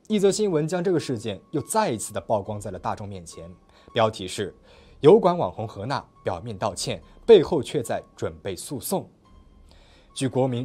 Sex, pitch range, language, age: male, 100-165 Hz, Chinese, 20-39